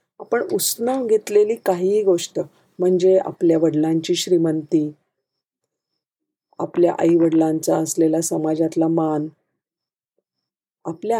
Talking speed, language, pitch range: 85 wpm, Marathi, 165-210 Hz